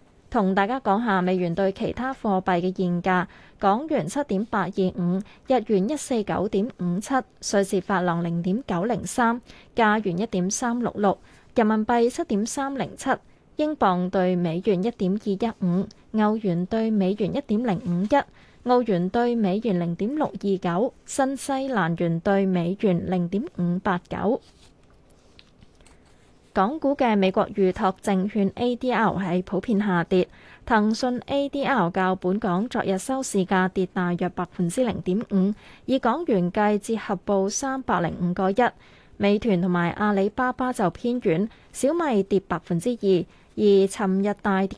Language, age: Chinese, 20-39